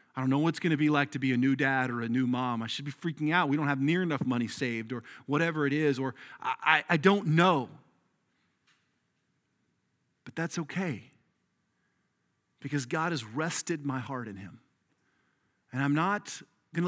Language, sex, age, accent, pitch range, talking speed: English, male, 40-59, American, 125-160 Hz, 195 wpm